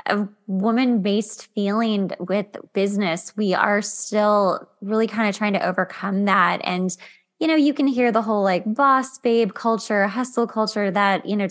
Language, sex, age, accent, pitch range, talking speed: English, female, 20-39, American, 195-230 Hz, 165 wpm